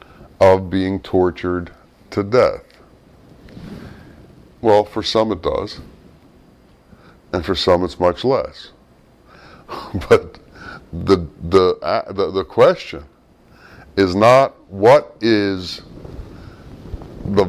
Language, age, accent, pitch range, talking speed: English, 60-79, American, 85-110 Hz, 95 wpm